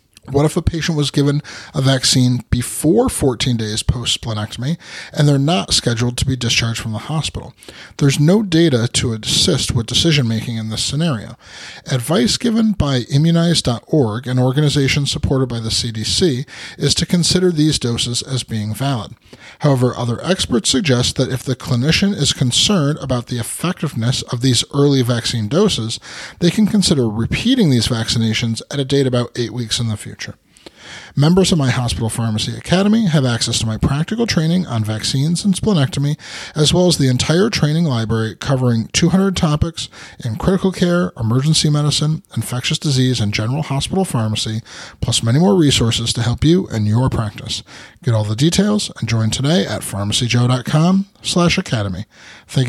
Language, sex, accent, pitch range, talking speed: English, male, American, 115-160 Hz, 160 wpm